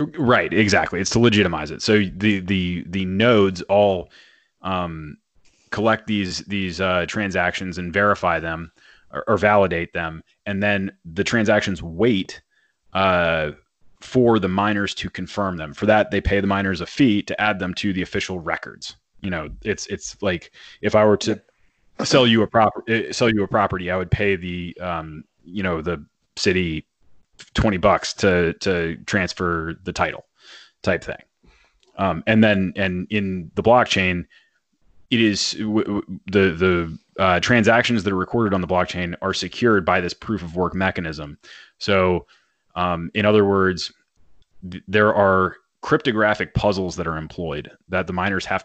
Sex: male